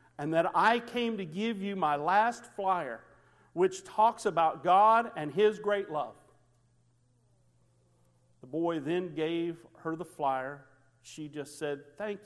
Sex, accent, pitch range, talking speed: male, American, 125-185 Hz, 140 wpm